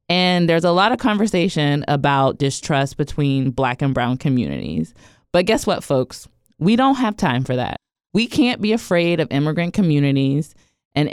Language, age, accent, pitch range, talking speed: English, 20-39, American, 145-195 Hz, 165 wpm